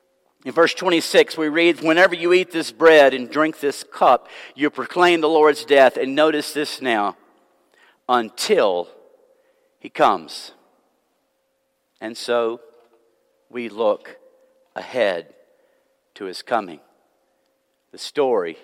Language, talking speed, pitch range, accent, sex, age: English, 115 wpm, 140-180 Hz, American, male, 50-69